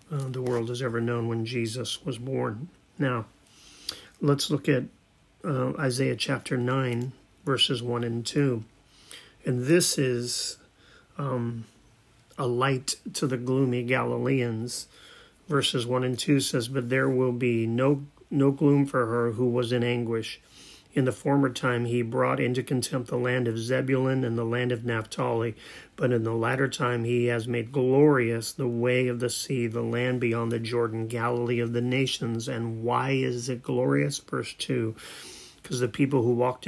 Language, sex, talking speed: English, male, 165 wpm